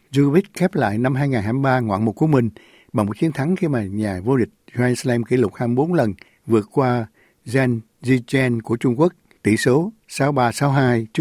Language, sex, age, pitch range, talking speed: Vietnamese, male, 60-79, 110-135 Hz, 185 wpm